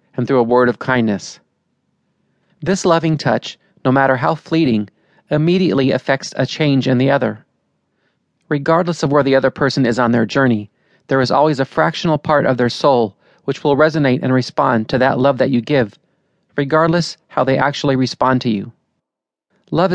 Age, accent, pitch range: 40-59, American, 125-150 Hz